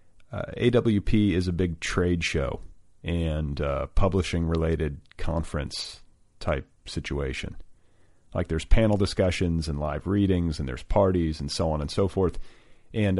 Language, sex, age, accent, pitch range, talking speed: English, male, 40-59, American, 80-100 Hz, 140 wpm